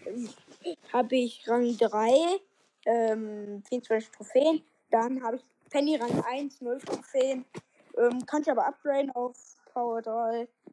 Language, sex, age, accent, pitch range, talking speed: German, female, 10-29, German, 245-305 Hz, 125 wpm